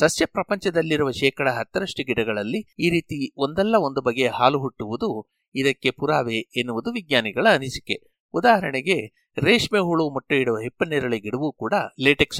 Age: 60-79